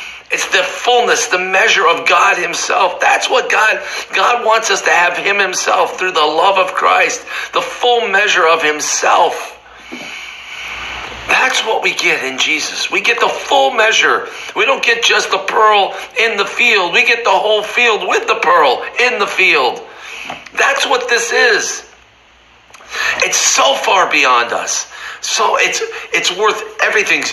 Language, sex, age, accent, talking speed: English, male, 50-69, American, 160 wpm